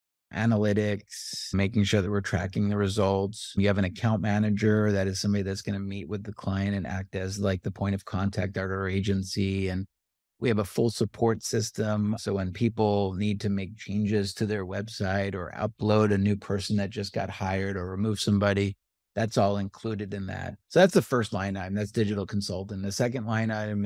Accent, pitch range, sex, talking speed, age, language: American, 100-110 Hz, male, 205 wpm, 50-69, English